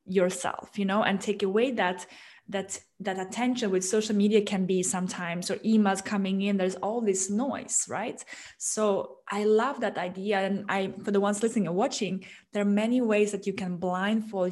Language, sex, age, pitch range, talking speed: English, female, 20-39, 190-225 Hz, 190 wpm